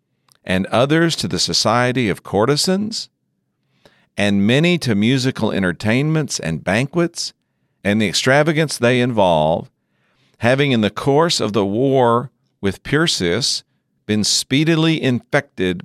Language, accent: English, American